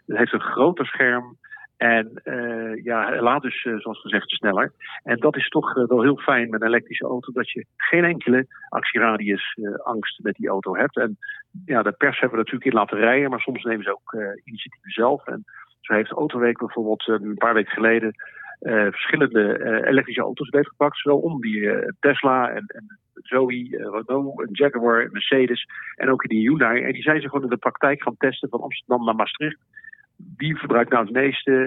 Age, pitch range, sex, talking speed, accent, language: 50-69, 115-140 Hz, male, 210 wpm, Dutch, Dutch